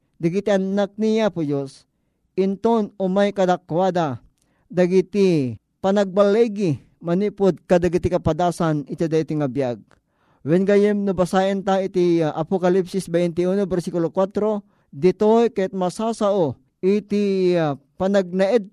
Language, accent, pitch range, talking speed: Filipino, native, 165-205 Hz, 105 wpm